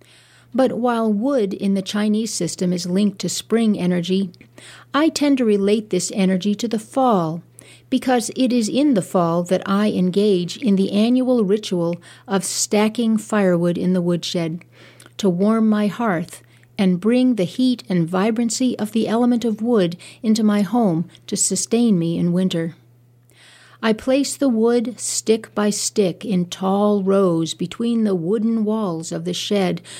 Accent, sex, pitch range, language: American, female, 170-230 Hz, English